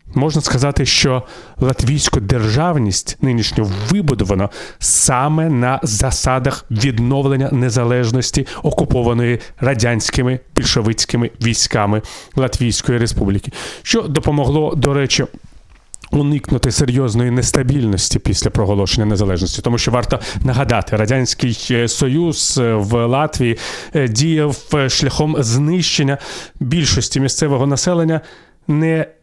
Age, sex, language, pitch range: 30-49, male, Ukrainian, 115-140 Hz